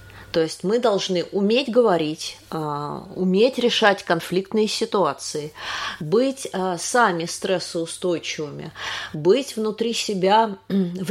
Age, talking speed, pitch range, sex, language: 30-49, 90 wpm, 165-220 Hz, female, Russian